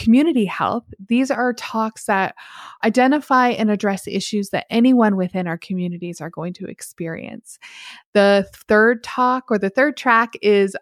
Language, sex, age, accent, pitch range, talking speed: English, female, 20-39, American, 185-230 Hz, 150 wpm